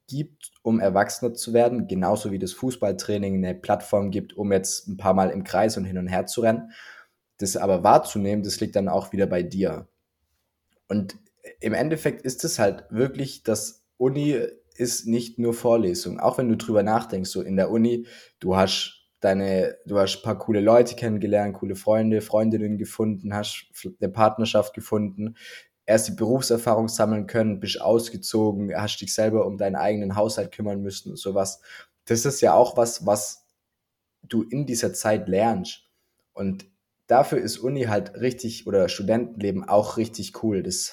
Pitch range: 95-115 Hz